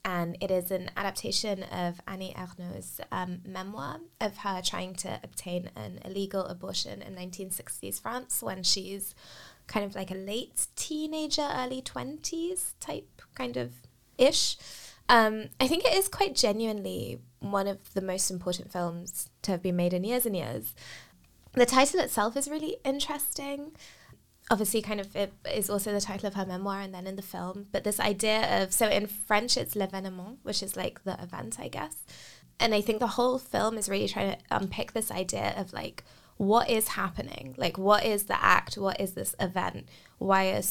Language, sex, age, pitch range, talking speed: English, female, 20-39, 180-215 Hz, 185 wpm